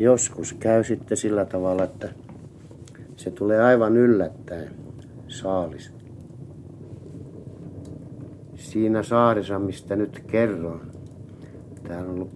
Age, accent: 60-79, native